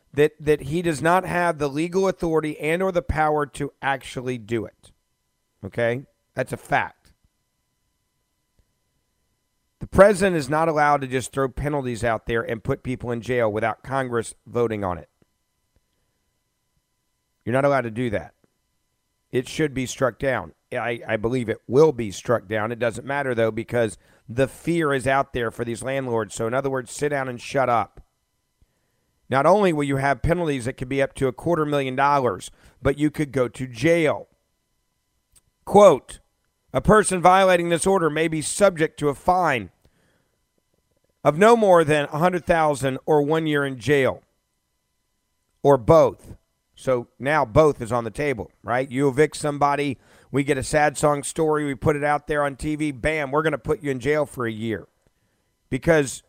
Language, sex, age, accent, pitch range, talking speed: English, male, 40-59, American, 120-155 Hz, 175 wpm